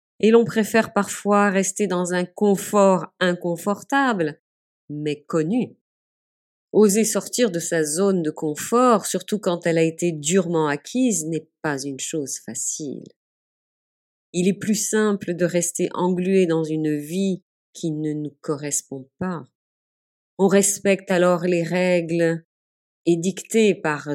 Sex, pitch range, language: female, 155-200 Hz, French